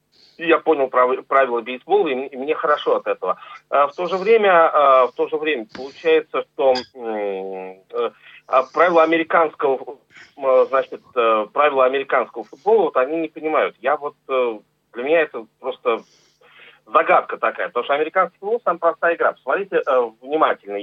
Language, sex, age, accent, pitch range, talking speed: Russian, male, 40-59, native, 125-175 Hz, 135 wpm